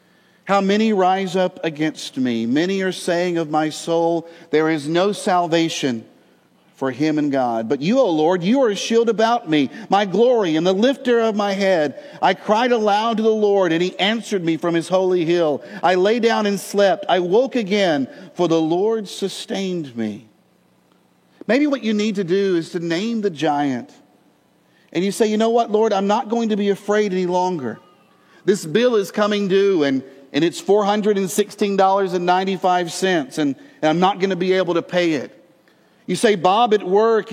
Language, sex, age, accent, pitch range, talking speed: English, male, 50-69, American, 165-215 Hz, 185 wpm